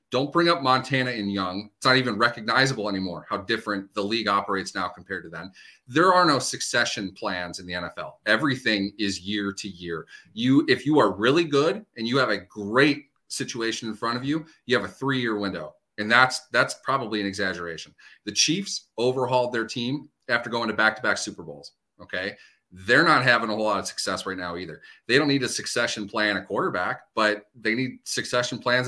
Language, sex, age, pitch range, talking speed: English, male, 30-49, 105-135 Hz, 200 wpm